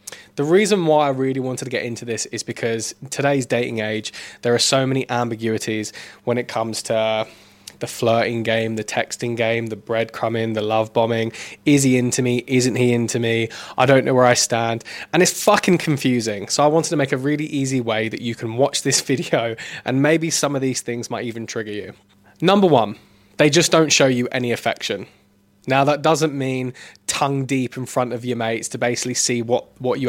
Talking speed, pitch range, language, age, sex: 205 wpm, 115-140 Hz, English, 20-39, male